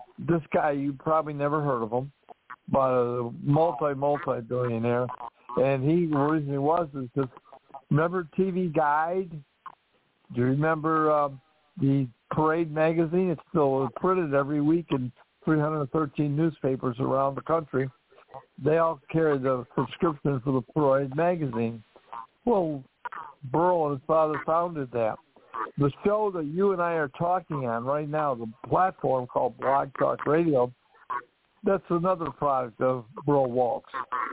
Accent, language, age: American, English, 60-79